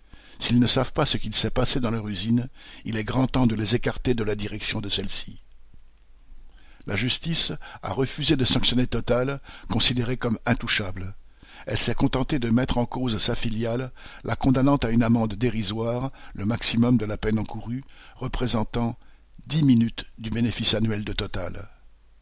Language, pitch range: French, 105-125 Hz